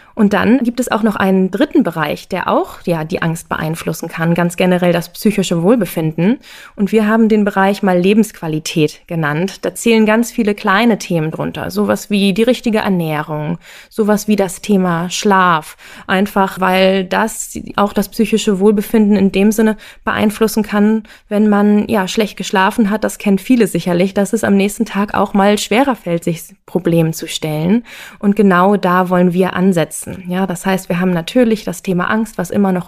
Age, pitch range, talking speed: 20-39, 180-215 Hz, 180 wpm